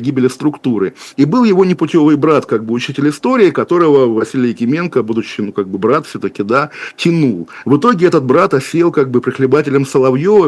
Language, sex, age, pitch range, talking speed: Russian, male, 50-69, 120-145 Hz, 180 wpm